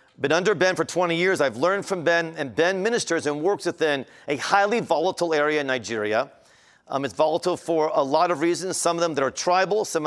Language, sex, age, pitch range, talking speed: German, male, 40-59, 145-180 Hz, 220 wpm